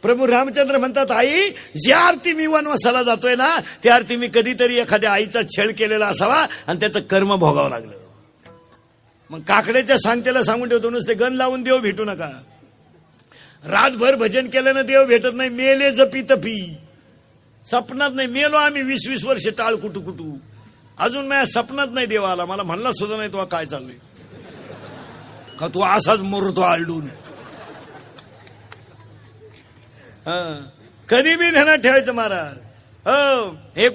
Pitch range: 190-270 Hz